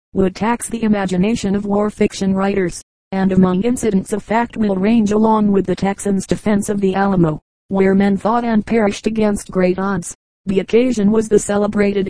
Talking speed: 180 wpm